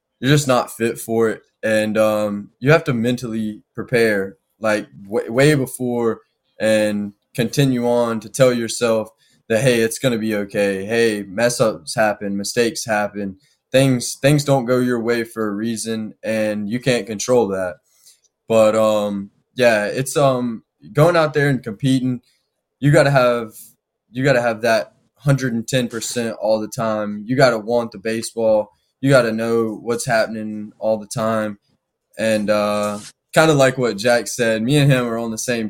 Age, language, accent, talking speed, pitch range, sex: 20-39, English, American, 170 wpm, 110-130 Hz, male